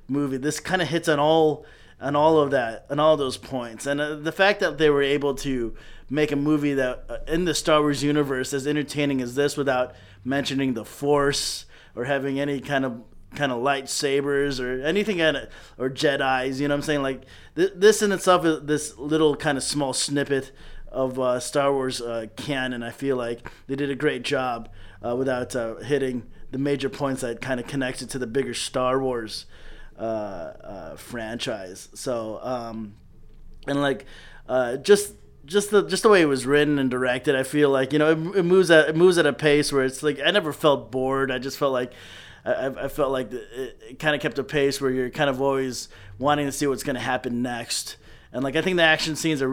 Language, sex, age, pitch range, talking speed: English, male, 30-49, 130-150 Hz, 220 wpm